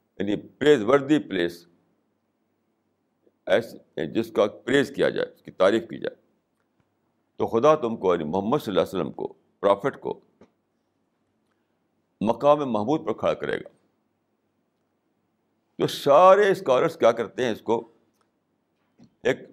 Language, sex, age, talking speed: Urdu, male, 60-79, 130 wpm